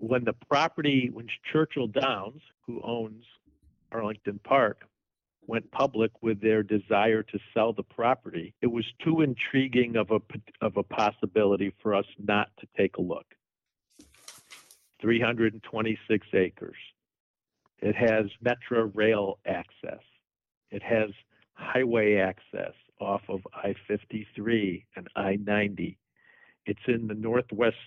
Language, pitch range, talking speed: English, 105-125 Hz, 115 wpm